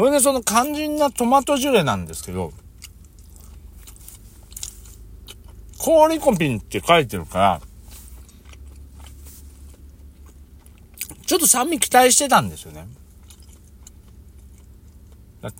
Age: 60-79